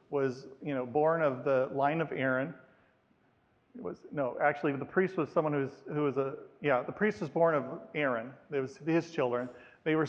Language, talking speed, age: English, 210 wpm, 40-59